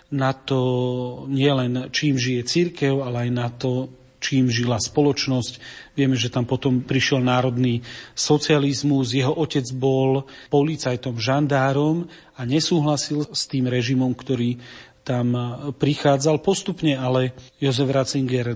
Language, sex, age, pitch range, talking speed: Slovak, male, 40-59, 125-150 Hz, 120 wpm